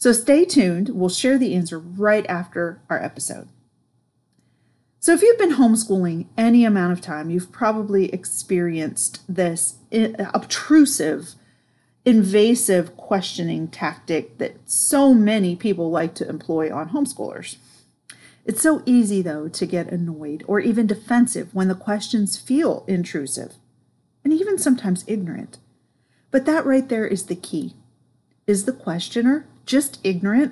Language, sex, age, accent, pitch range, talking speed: English, female, 40-59, American, 175-240 Hz, 135 wpm